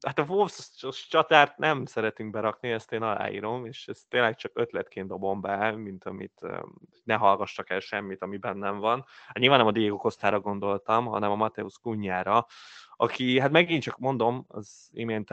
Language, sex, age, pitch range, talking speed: Hungarian, male, 20-39, 100-125 Hz, 170 wpm